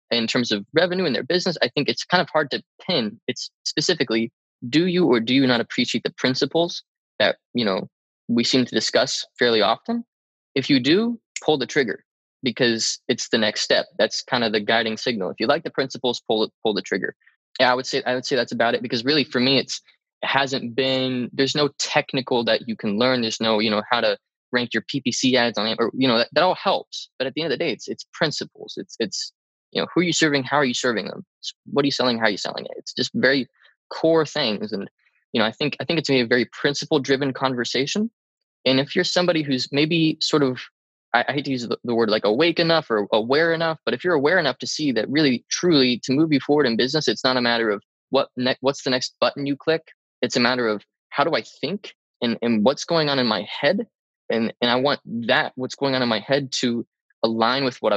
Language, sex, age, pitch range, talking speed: English, male, 20-39, 120-155 Hz, 245 wpm